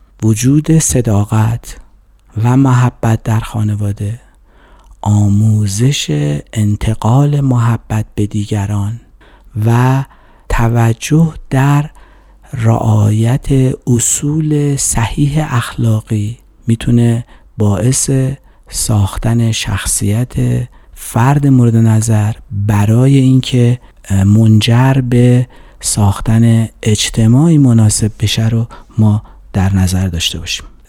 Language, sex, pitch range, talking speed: Persian, male, 105-135 Hz, 75 wpm